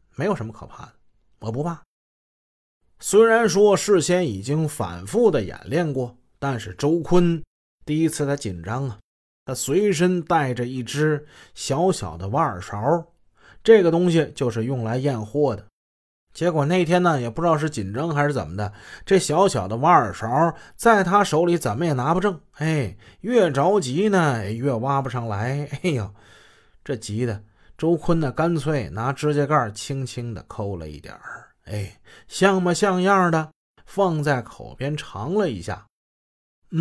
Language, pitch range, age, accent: Chinese, 115-175 Hz, 20-39, native